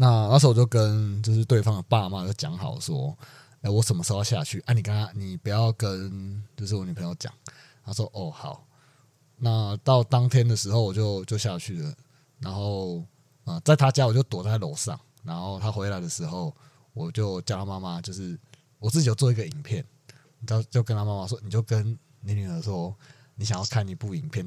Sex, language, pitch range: male, Chinese, 110-140 Hz